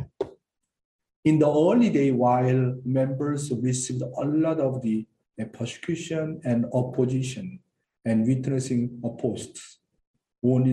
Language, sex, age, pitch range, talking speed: English, male, 50-69, 120-150 Hz, 100 wpm